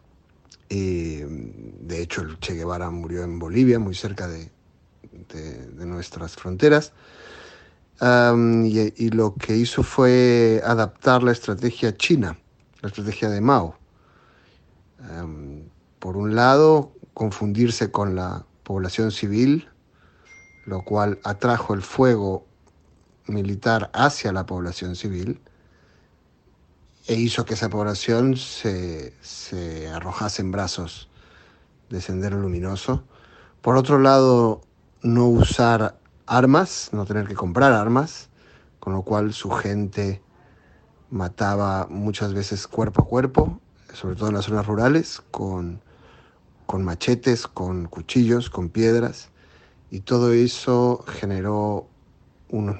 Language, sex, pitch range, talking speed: Spanish, male, 90-120 Hz, 110 wpm